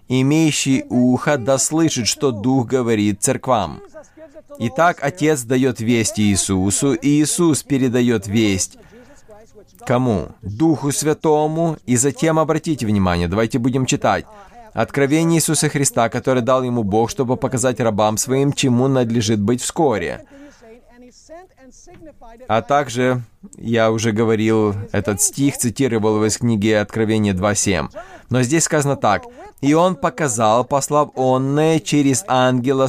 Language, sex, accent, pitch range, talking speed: Russian, male, native, 115-155 Hz, 120 wpm